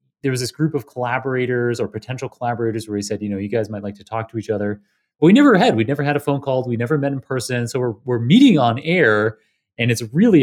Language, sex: English, male